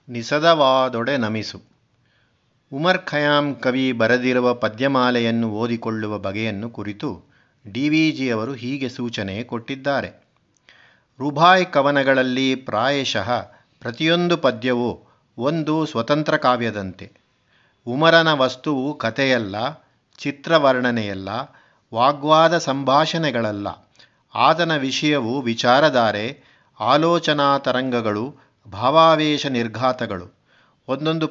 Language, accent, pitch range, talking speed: Kannada, native, 120-150 Hz, 70 wpm